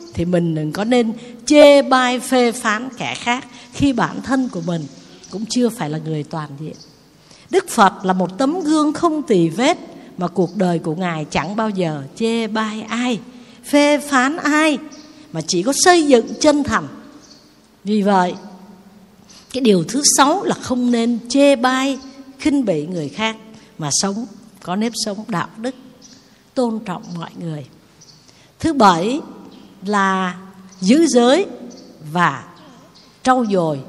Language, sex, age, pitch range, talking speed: Vietnamese, female, 60-79, 180-255 Hz, 155 wpm